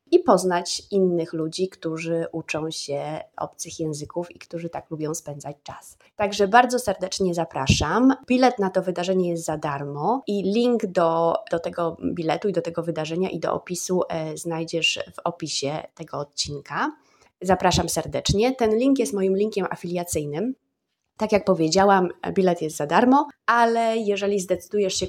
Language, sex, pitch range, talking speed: Polish, female, 160-195 Hz, 150 wpm